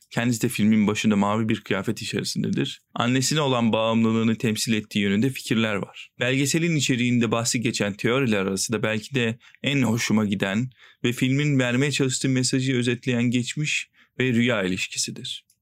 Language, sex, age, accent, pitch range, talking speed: Turkish, male, 40-59, native, 110-130 Hz, 140 wpm